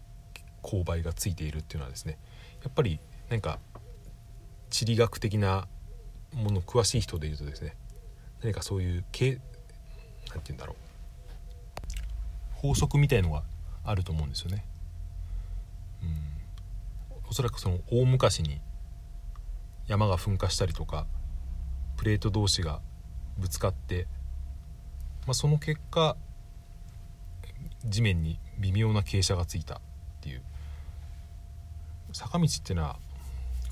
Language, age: Japanese, 40-59